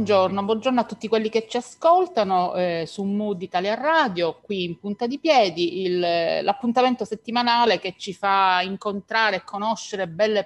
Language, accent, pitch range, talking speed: Italian, native, 175-220 Hz, 160 wpm